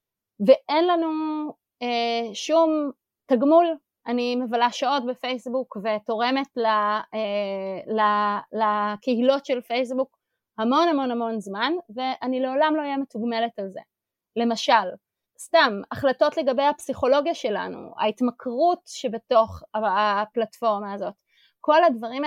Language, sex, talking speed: Hebrew, female, 105 wpm